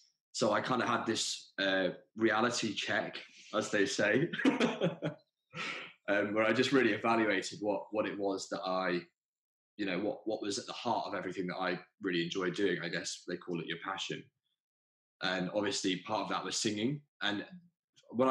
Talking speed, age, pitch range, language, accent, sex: 180 wpm, 20-39, 90-110 Hz, English, British, male